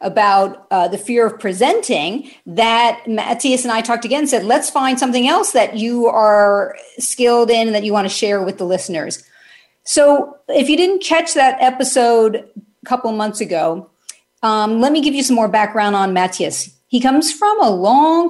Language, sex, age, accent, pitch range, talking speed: English, female, 50-69, American, 195-255 Hz, 185 wpm